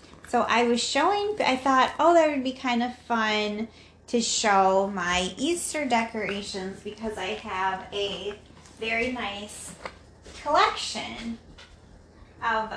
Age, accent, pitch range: 30-49, American, 195-250 Hz